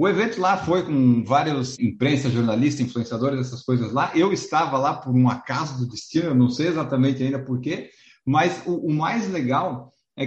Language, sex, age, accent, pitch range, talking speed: Portuguese, male, 50-69, Brazilian, 130-160 Hz, 185 wpm